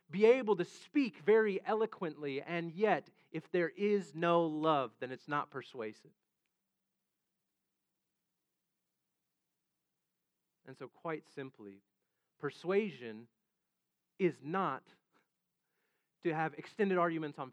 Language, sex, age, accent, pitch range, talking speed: English, male, 40-59, American, 130-180 Hz, 100 wpm